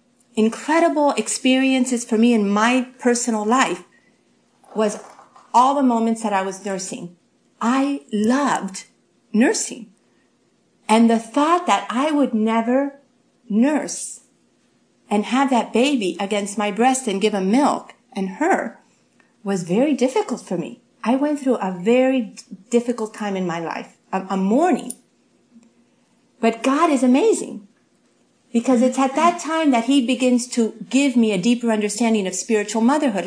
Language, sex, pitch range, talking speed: English, female, 210-265 Hz, 140 wpm